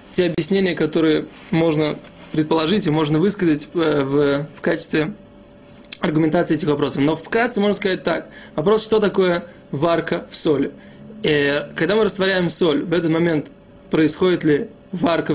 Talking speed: 135 wpm